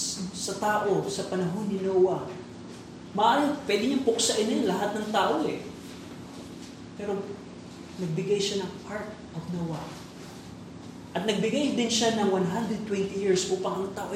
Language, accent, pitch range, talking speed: Filipino, native, 165-205 Hz, 130 wpm